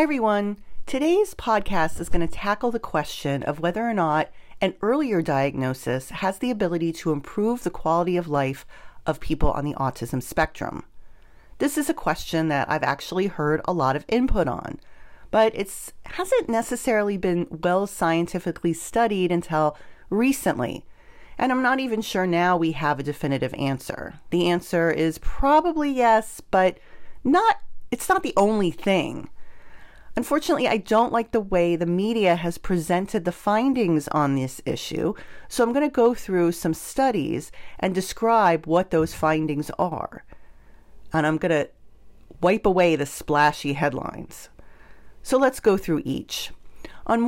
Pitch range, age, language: 155-220 Hz, 40-59, English